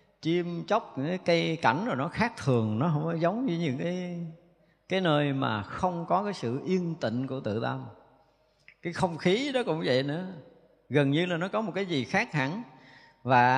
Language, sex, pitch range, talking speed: Vietnamese, male, 130-180 Hz, 210 wpm